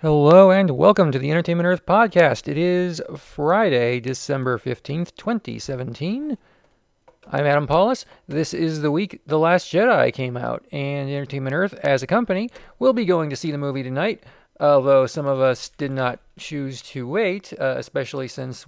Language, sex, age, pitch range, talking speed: English, male, 40-59, 135-175 Hz, 165 wpm